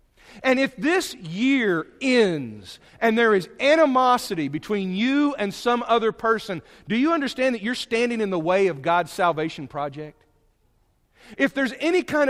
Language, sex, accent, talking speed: English, male, American, 155 wpm